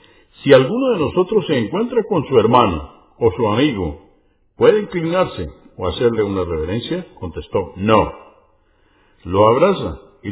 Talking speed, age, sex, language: 135 wpm, 50-69, male, Spanish